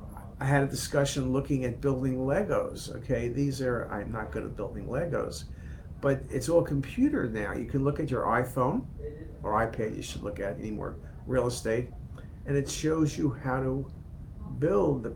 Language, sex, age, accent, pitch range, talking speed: English, male, 50-69, American, 110-145 Hz, 180 wpm